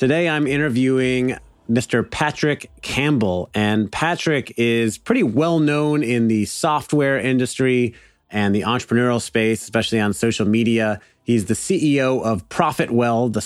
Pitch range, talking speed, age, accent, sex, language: 110-130 Hz, 135 wpm, 30-49, American, male, English